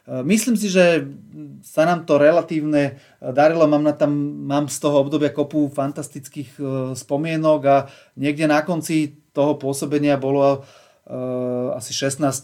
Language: Slovak